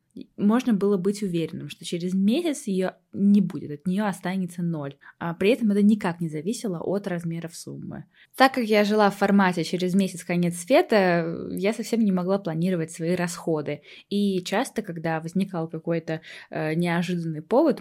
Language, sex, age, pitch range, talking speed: Russian, female, 20-39, 165-195 Hz, 165 wpm